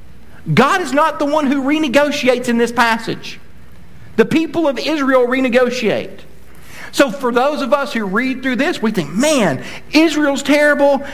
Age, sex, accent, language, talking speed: 50-69, male, American, English, 155 wpm